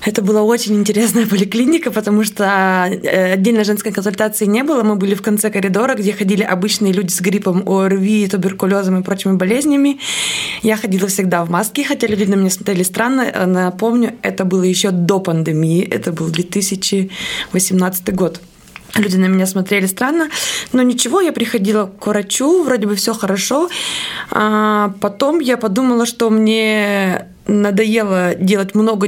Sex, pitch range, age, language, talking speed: female, 190-225 Hz, 20-39, Russian, 150 wpm